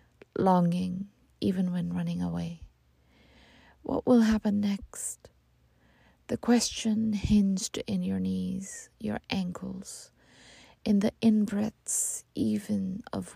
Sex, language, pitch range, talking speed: female, English, 125-200 Hz, 100 wpm